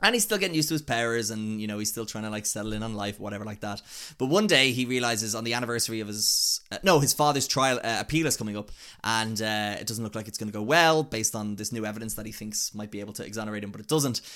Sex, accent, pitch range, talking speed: male, Irish, 105-115 Hz, 295 wpm